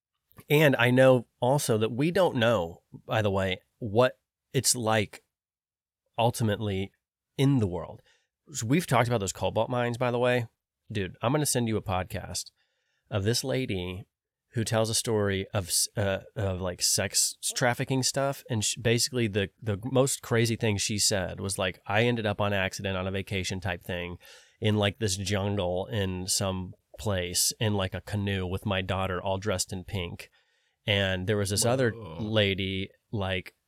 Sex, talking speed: male, 175 wpm